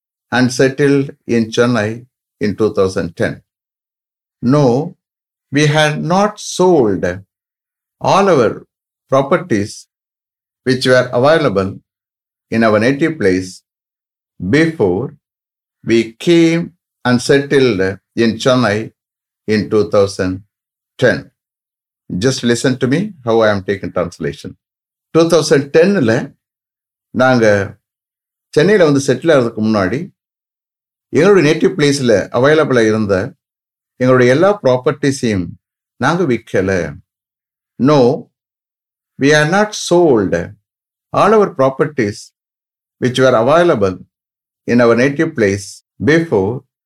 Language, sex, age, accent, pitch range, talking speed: English, male, 60-79, Indian, 100-140 Hz, 90 wpm